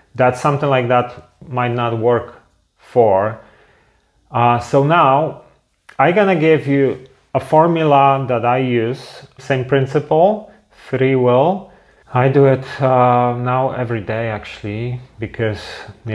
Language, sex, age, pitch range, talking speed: English, male, 30-49, 115-130 Hz, 125 wpm